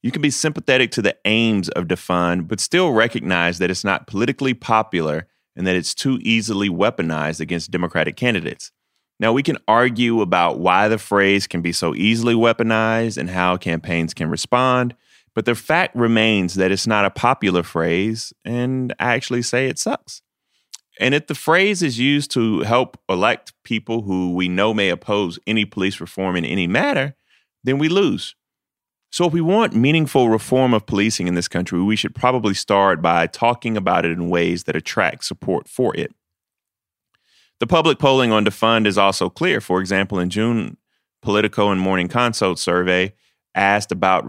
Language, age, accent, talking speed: English, 30-49, American, 175 wpm